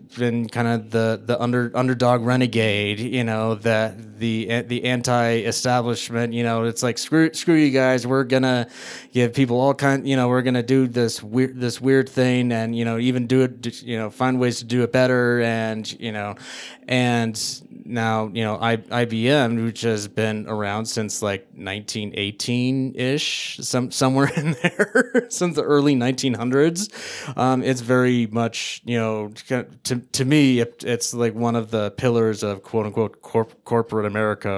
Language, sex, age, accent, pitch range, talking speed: English, male, 20-39, American, 115-130 Hz, 170 wpm